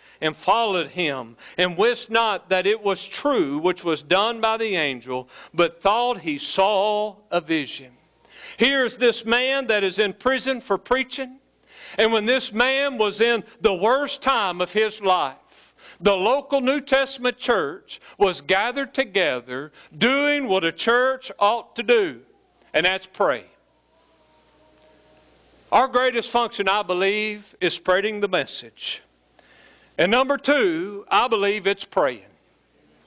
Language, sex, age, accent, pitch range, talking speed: English, male, 50-69, American, 190-245 Hz, 140 wpm